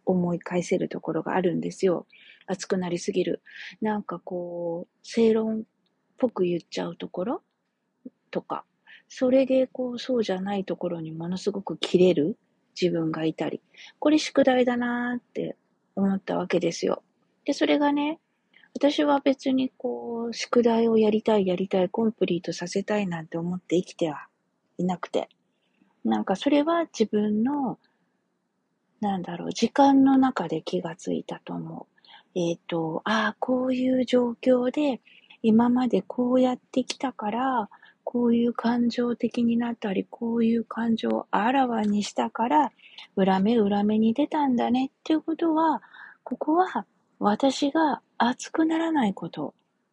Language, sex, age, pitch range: Japanese, female, 40-59, 185-260 Hz